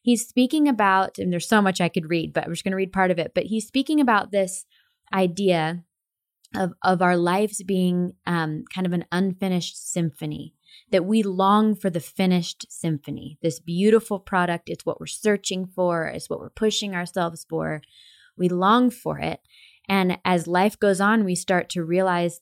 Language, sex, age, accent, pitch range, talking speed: English, female, 20-39, American, 170-200 Hz, 185 wpm